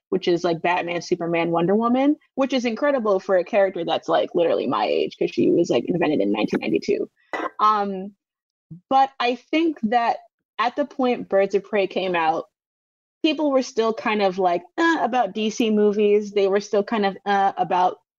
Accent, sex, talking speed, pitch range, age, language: American, female, 180 wpm, 185-245 Hz, 20-39, English